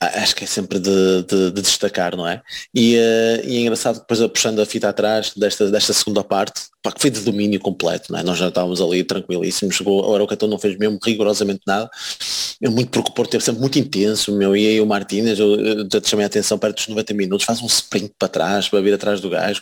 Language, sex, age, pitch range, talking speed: Portuguese, male, 20-39, 105-135 Hz, 245 wpm